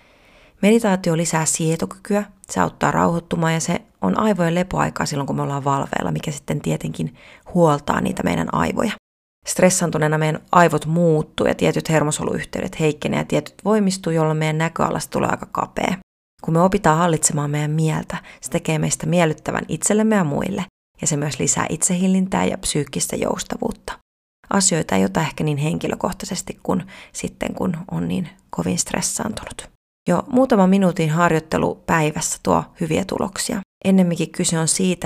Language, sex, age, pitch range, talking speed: Finnish, female, 30-49, 155-185 Hz, 145 wpm